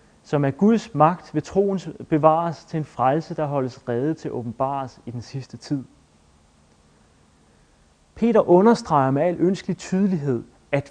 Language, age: Danish, 30-49